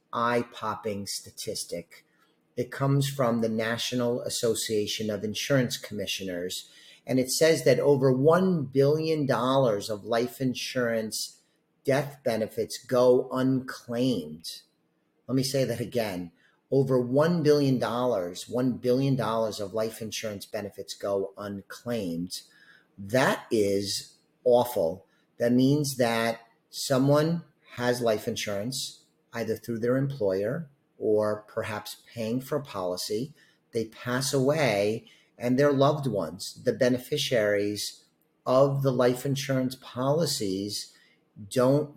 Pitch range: 105-135 Hz